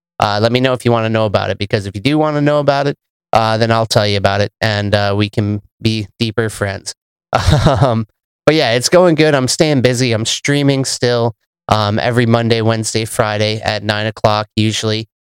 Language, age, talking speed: English, 30-49, 215 wpm